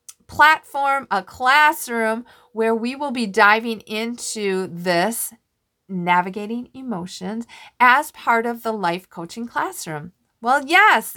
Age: 40-59